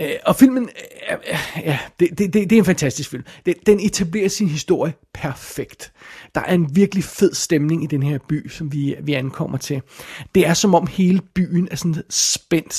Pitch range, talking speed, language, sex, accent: 145-180 Hz, 185 wpm, Danish, male, native